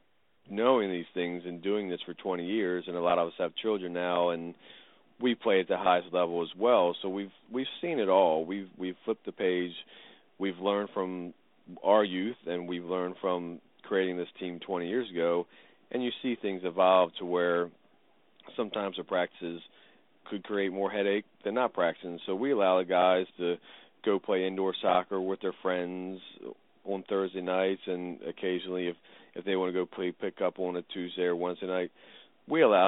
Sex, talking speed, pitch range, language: male, 190 wpm, 85-95 Hz, English